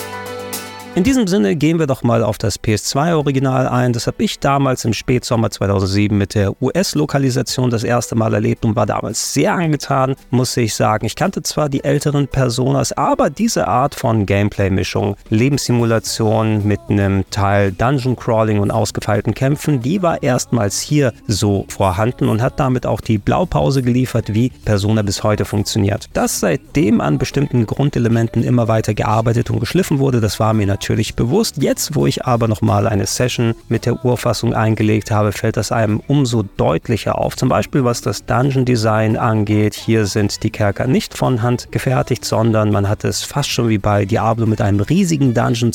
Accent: German